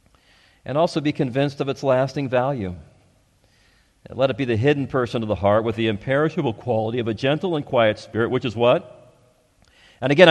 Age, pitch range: 50-69, 100-135 Hz